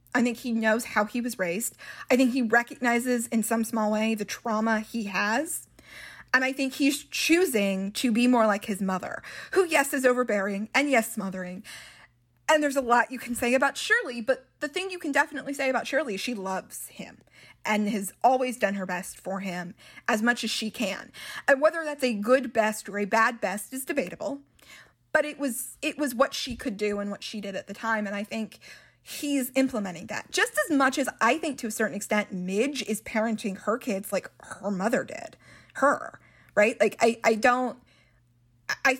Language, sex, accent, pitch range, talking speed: English, female, American, 195-255 Hz, 205 wpm